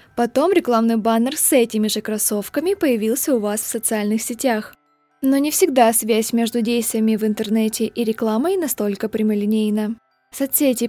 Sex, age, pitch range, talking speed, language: female, 20-39, 220-275 Hz, 145 wpm, Russian